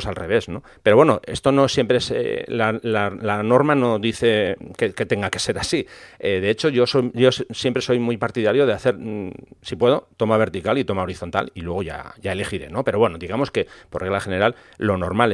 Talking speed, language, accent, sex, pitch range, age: 220 wpm, English, Spanish, male, 100-125 Hz, 40-59